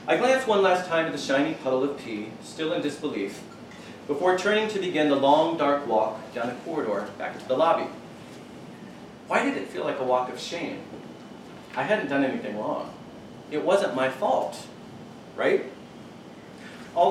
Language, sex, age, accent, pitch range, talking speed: English, male, 30-49, American, 135-180 Hz, 170 wpm